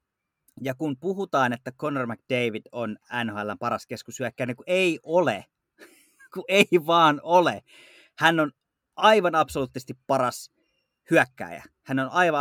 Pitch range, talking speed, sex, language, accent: 115-165 Hz, 120 wpm, male, Finnish, native